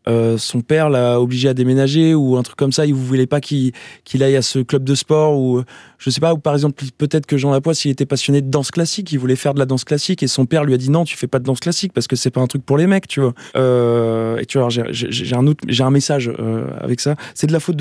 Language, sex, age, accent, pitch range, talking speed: French, male, 20-39, French, 130-160 Hz, 310 wpm